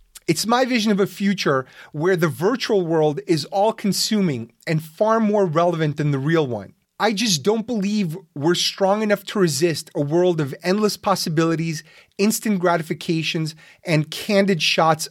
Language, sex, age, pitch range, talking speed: English, male, 30-49, 150-190 Hz, 155 wpm